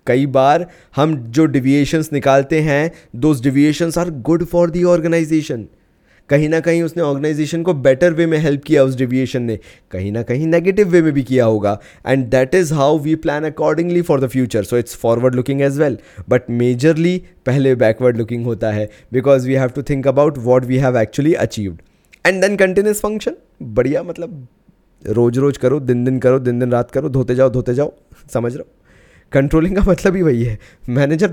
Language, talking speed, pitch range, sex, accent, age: Hindi, 190 wpm, 120-155 Hz, male, native, 20-39